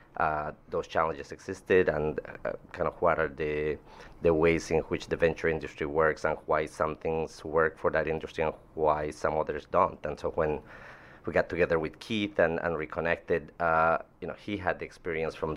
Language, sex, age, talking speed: English, male, 30-49, 195 wpm